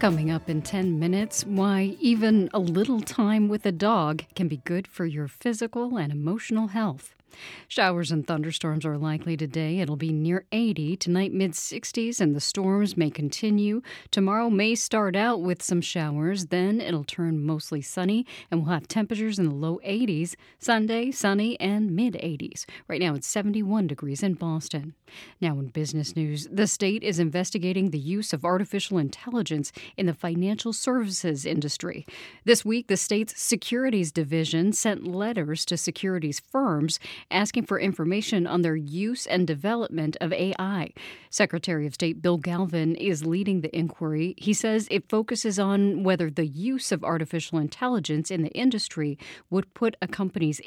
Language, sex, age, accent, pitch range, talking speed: English, female, 40-59, American, 160-210 Hz, 160 wpm